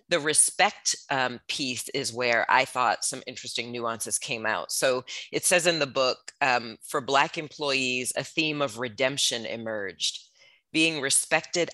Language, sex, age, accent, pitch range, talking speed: English, female, 40-59, American, 120-145 Hz, 155 wpm